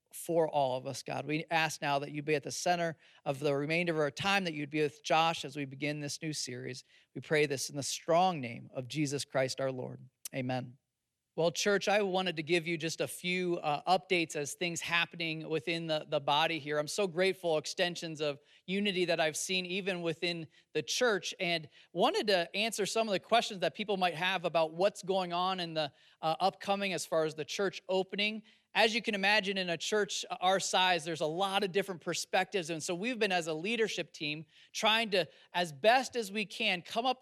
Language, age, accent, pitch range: English, 40-59, American, 160-205 Hz